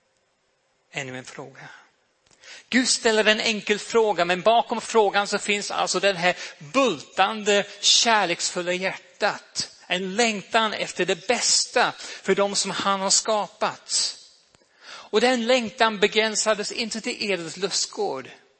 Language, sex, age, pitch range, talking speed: Swedish, male, 40-59, 160-210 Hz, 125 wpm